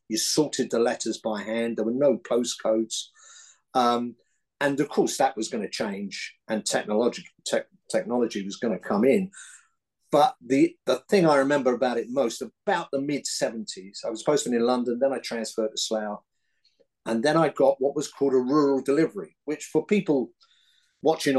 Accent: British